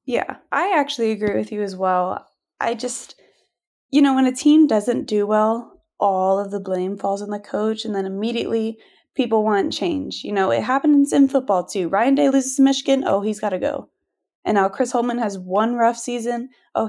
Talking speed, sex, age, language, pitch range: 205 wpm, female, 20-39, English, 205-270 Hz